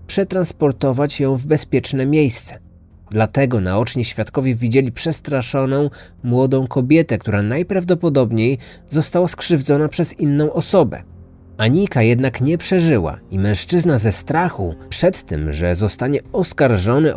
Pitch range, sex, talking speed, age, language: 110-150 Hz, male, 110 wpm, 30-49, Polish